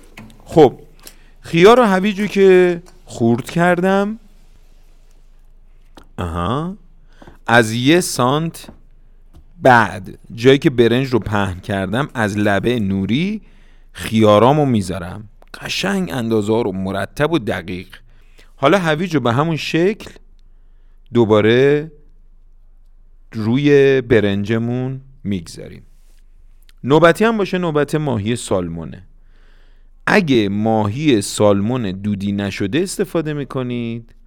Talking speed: 90 wpm